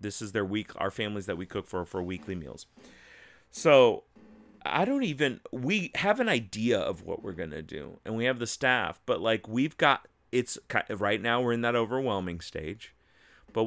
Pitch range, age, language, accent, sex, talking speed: 100-130 Hz, 30-49, English, American, male, 200 wpm